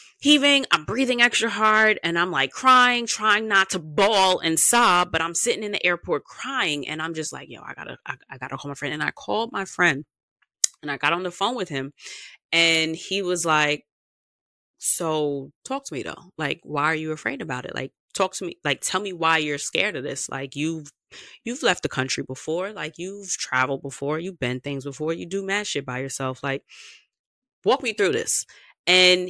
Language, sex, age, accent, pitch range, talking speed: English, female, 20-39, American, 145-210 Hz, 210 wpm